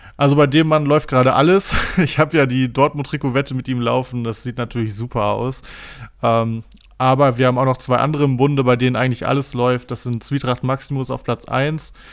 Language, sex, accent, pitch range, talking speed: German, male, German, 120-135 Hz, 210 wpm